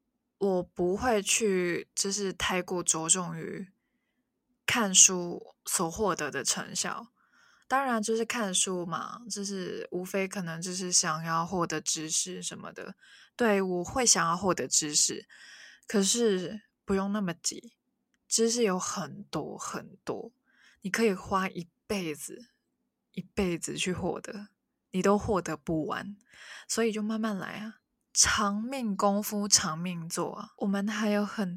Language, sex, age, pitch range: Chinese, female, 20-39, 180-225 Hz